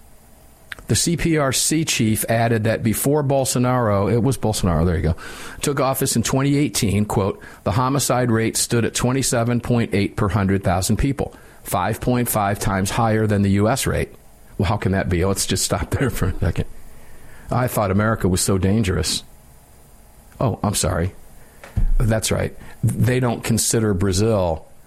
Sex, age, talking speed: male, 50-69, 145 wpm